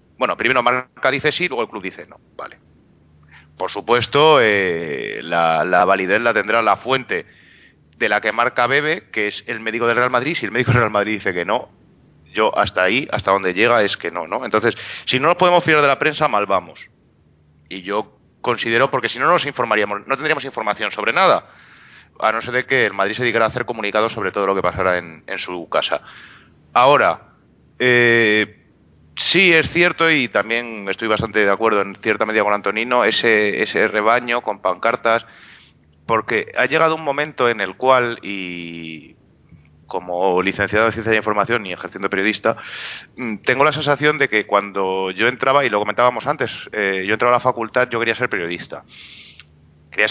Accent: Spanish